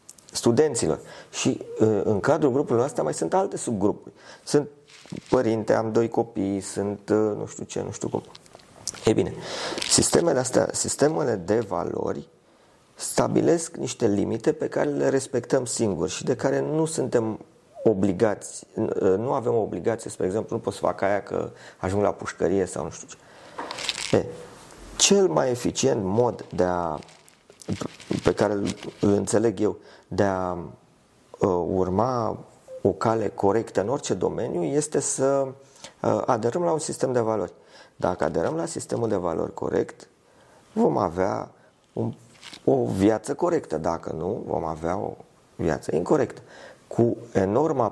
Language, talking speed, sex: Romanian, 140 wpm, male